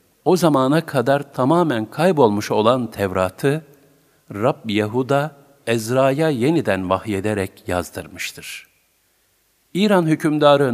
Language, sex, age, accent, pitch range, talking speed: Turkish, male, 50-69, native, 100-140 Hz, 80 wpm